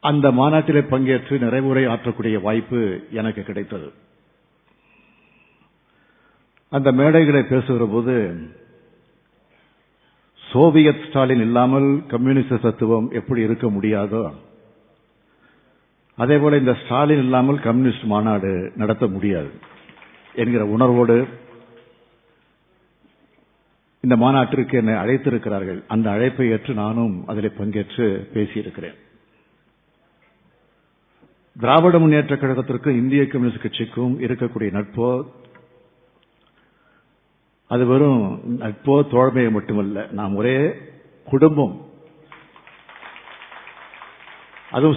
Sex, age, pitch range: male, 50-69, 115-140 Hz